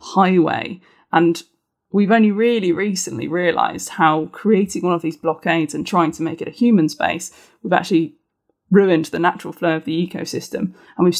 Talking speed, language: 170 wpm, English